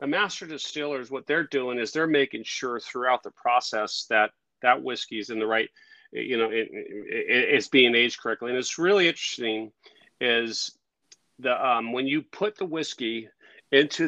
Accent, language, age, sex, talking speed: American, English, 40-59, male, 175 wpm